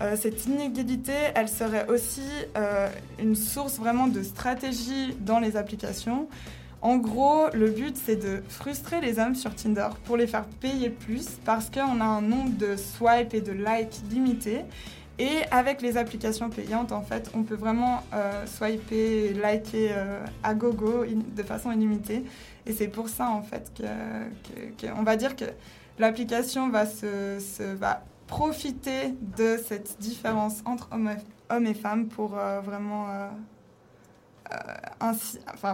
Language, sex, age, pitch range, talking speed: French, female, 20-39, 215-240 Hz, 155 wpm